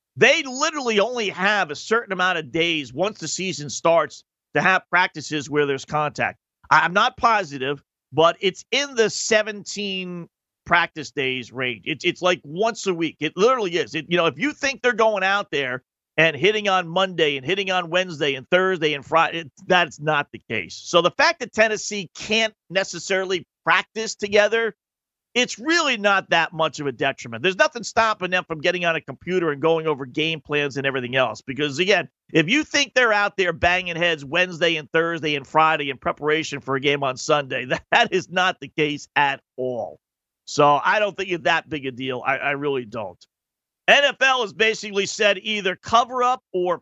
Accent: American